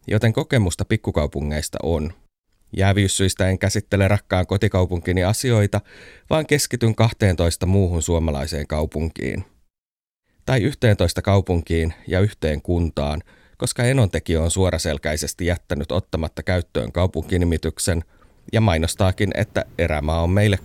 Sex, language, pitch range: male, Finnish, 80-105 Hz